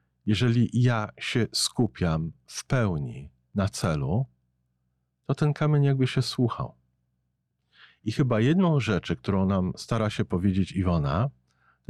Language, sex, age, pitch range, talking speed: Polish, male, 50-69, 70-120 Hz, 125 wpm